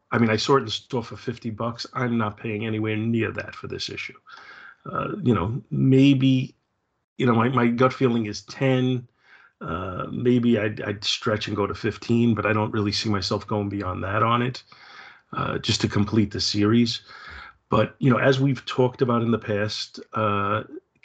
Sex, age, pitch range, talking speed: male, 40-59, 105-120 Hz, 195 wpm